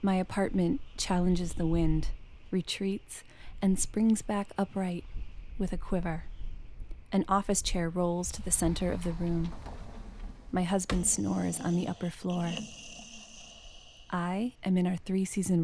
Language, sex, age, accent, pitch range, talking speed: English, female, 20-39, American, 165-190 Hz, 135 wpm